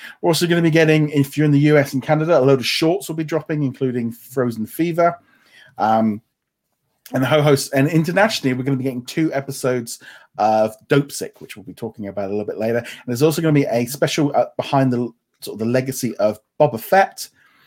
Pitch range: 120-160 Hz